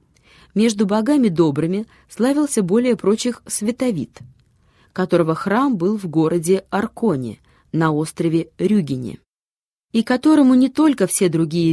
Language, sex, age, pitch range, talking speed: Russian, female, 20-39, 160-220 Hz, 115 wpm